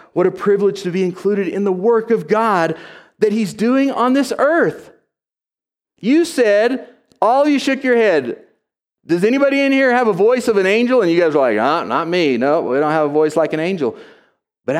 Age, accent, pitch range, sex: 40-59, American, 150-235 Hz, male